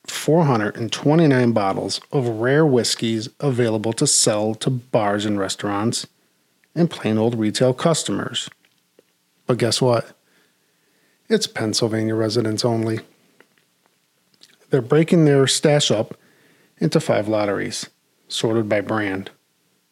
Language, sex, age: English, male, 40-59